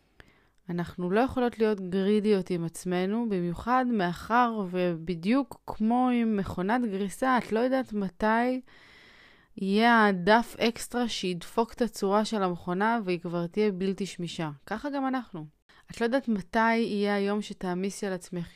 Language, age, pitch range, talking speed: Hebrew, 20-39, 175-220 Hz, 140 wpm